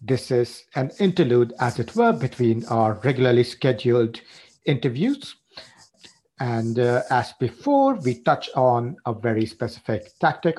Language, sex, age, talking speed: English, male, 50-69, 130 wpm